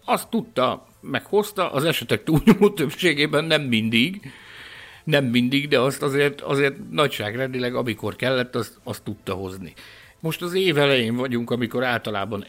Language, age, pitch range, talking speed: Hungarian, 60-79, 105-140 Hz, 135 wpm